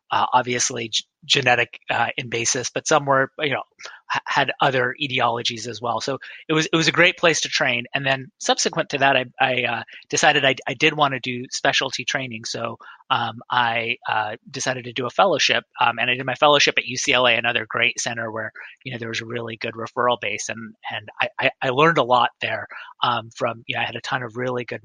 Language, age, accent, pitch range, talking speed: English, 30-49, American, 120-145 Hz, 220 wpm